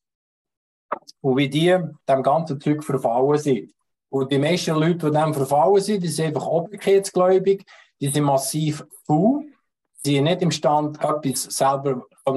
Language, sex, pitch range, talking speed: German, male, 130-155 Hz, 145 wpm